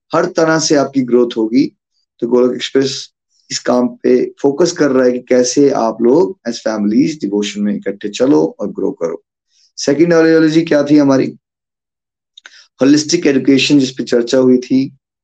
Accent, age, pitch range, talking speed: native, 20-39, 125-150 Hz, 155 wpm